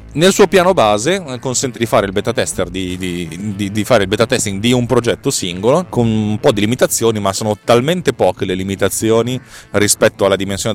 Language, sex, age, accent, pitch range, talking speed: Italian, male, 30-49, native, 95-125 Hz, 200 wpm